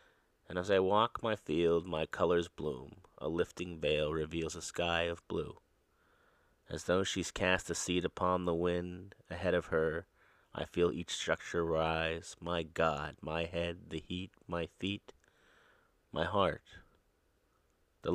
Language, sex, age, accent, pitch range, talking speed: English, male, 30-49, American, 80-90 Hz, 150 wpm